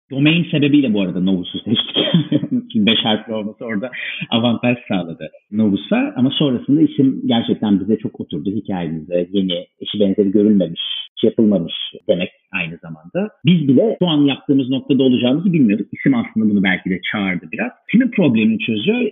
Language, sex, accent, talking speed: Turkish, male, native, 150 wpm